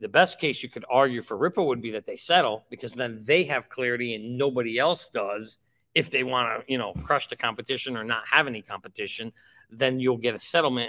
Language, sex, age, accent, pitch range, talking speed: English, male, 50-69, American, 120-145 Hz, 225 wpm